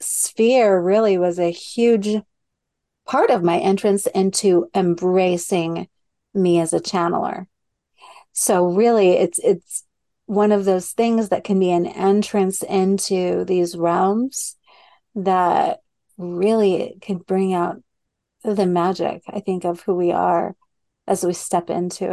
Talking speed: 130 wpm